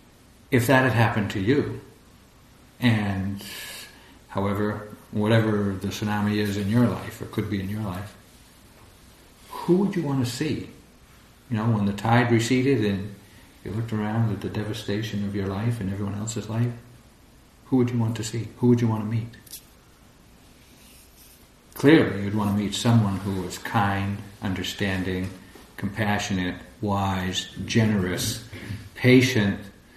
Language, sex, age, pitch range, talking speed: English, male, 50-69, 100-120 Hz, 145 wpm